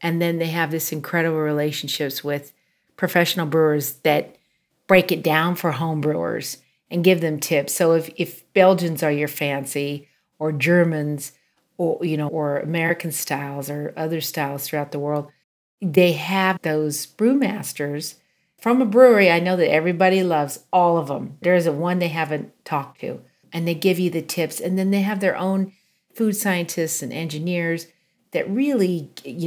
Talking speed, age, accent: 170 wpm, 40-59, American